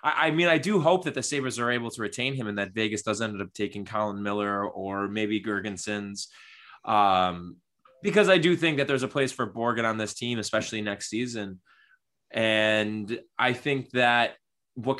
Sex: male